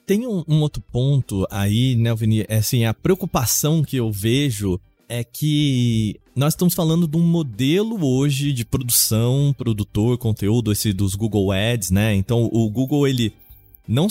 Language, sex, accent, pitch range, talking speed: Portuguese, male, Brazilian, 115-155 Hz, 155 wpm